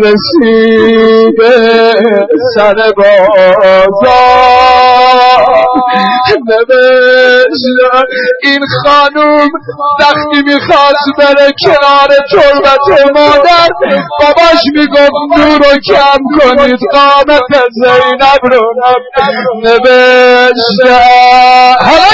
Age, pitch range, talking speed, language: 50-69, 225-290 Hz, 60 wpm, Persian